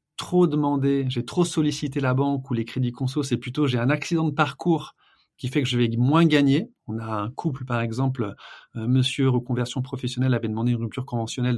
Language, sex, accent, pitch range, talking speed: French, male, French, 120-140 Hz, 205 wpm